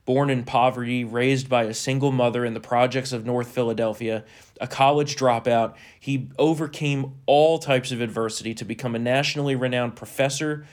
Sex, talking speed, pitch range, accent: male, 160 wpm, 115-135 Hz, American